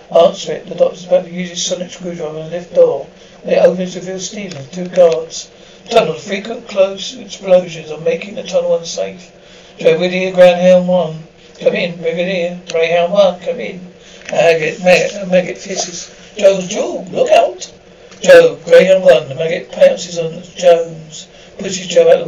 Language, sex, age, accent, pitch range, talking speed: English, male, 60-79, British, 165-190 Hz, 165 wpm